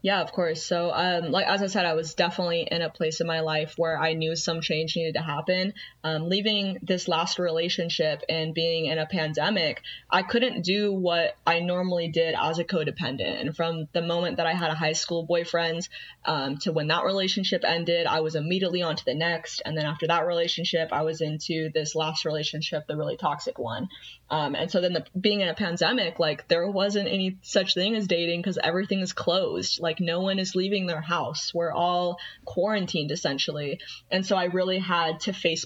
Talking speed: 210 wpm